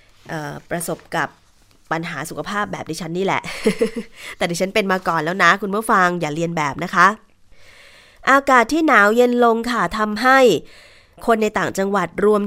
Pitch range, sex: 175-220 Hz, female